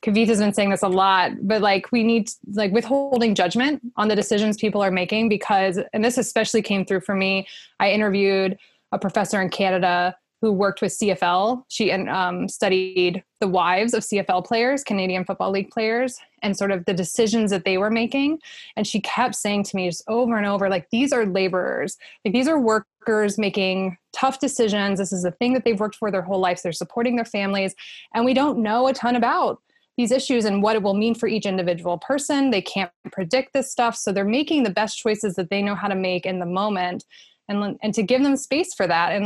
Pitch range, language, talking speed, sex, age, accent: 195-235 Hz, English, 220 wpm, female, 20-39, American